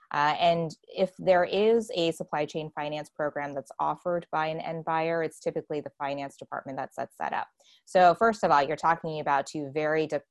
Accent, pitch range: American, 140-165 Hz